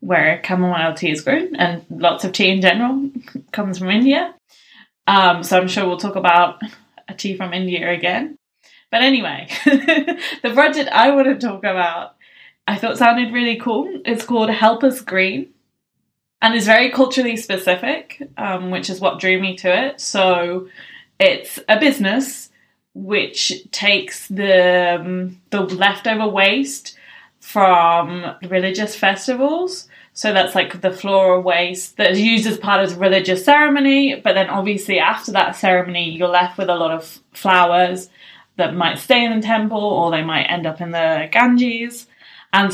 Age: 10-29